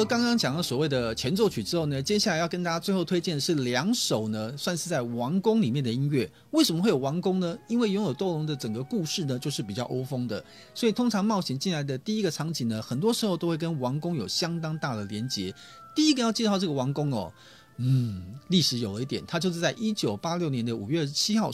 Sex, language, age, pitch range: male, Chinese, 30-49, 125-185 Hz